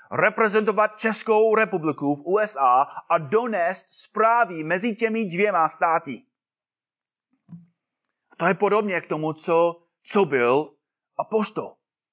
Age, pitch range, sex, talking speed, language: 30-49, 165-220 Hz, male, 105 wpm, Czech